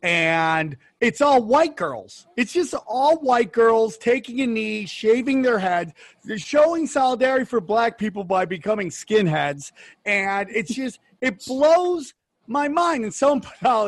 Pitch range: 175-235 Hz